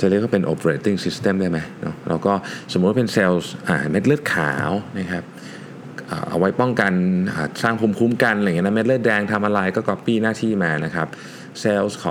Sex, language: male, Thai